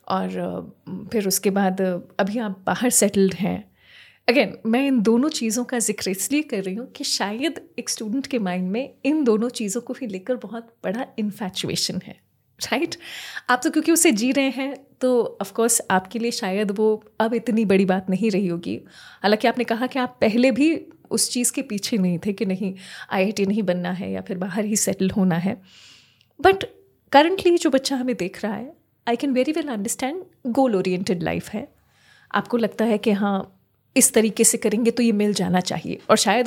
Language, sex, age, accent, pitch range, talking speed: Hindi, female, 30-49, native, 205-280 Hz, 195 wpm